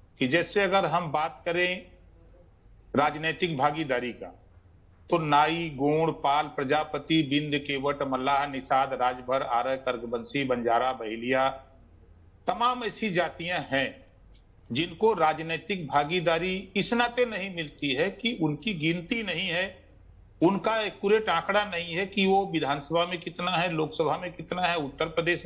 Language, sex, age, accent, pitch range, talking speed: Hindi, male, 50-69, native, 125-195 Hz, 130 wpm